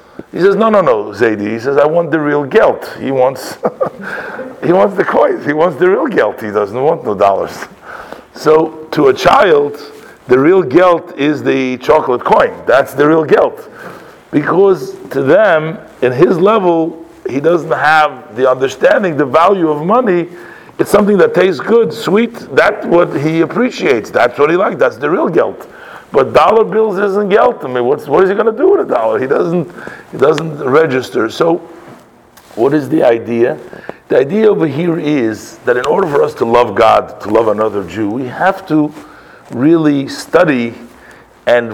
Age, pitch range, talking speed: 50-69, 135-205 Hz, 180 wpm